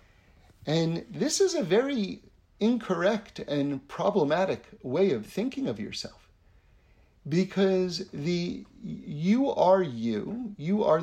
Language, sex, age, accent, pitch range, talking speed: English, male, 50-69, American, 140-215 Hz, 110 wpm